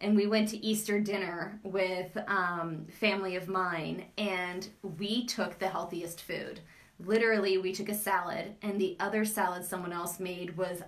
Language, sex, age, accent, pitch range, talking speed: English, female, 20-39, American, 180-210 Hz, 165 wpm